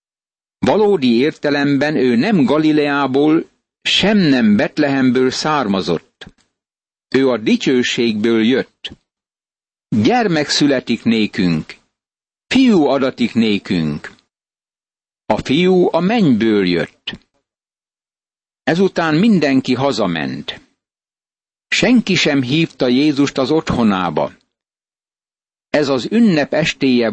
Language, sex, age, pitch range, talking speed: Hungarian, male, 60-79, 125-165 Hz, 80 wpm